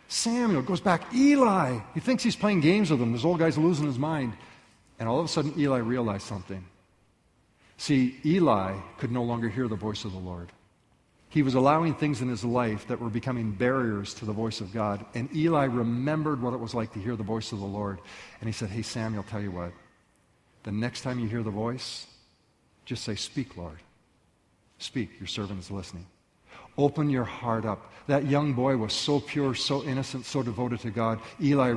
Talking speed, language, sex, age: 200 wpm, English, male, 50-69